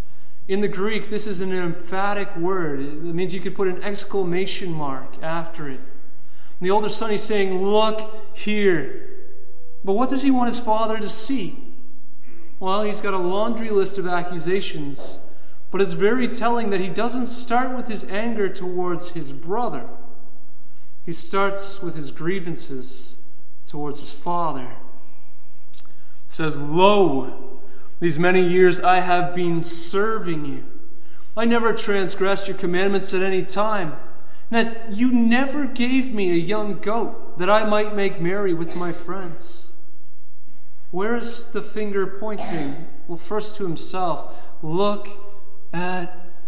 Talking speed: 140 wpm